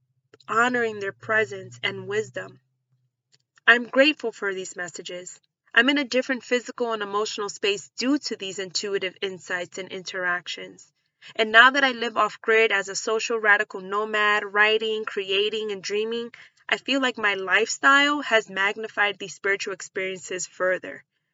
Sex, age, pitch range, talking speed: female, 20-39, 190-240 Hz, 145 wpm